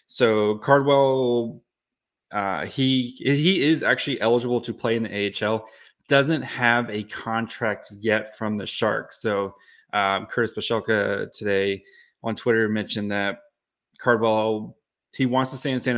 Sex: male